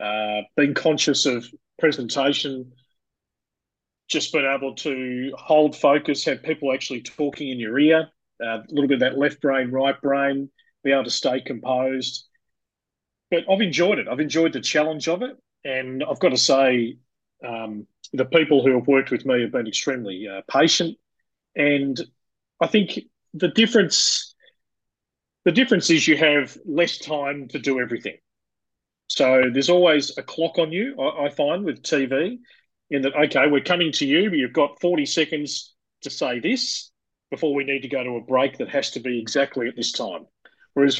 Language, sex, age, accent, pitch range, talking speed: English, male, 30-49, Australian, 130-160 Hz, 175 wpm